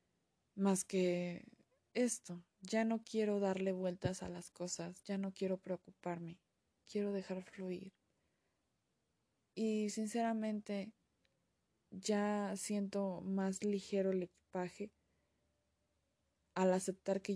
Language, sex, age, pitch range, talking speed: Spanish, female, 20-39, 170-200 Hz, 100 wpm